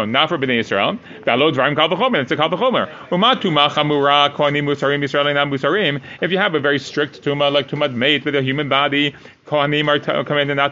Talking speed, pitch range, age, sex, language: 200 wpm, 135-165 Hz, 30-49, male, English